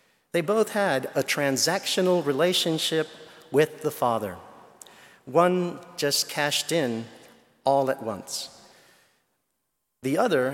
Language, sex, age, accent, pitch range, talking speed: English, male, 50-69, American, 140-180 Hz, 100 wpm